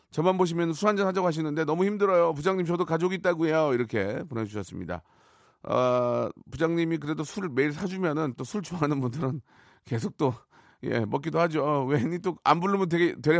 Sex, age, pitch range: male, 40-59, 120-170 Hz